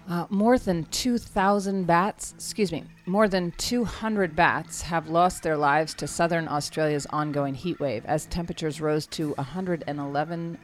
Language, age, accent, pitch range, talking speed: English, 40-59, American, 150-180 Hz, 175 wpm